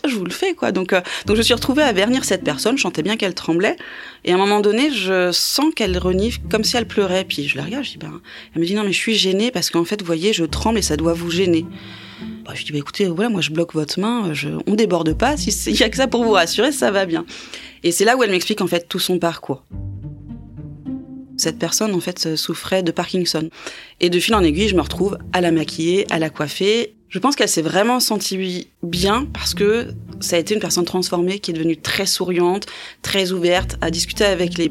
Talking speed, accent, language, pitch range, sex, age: 250 wpm, French, French, 165-210 Hz, female, 20-39